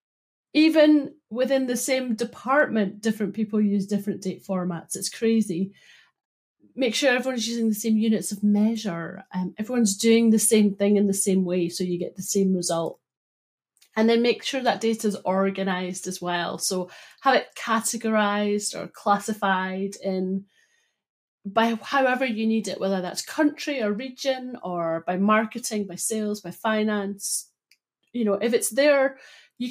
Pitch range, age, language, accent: 190-245 Hz, 30-49, English, British